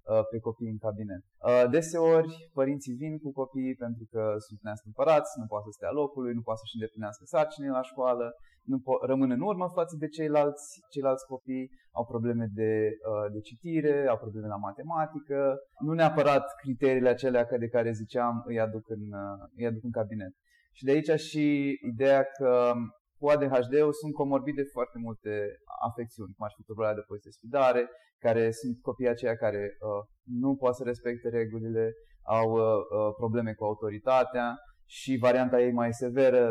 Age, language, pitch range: 20-39, Romanian, 110-135 Hz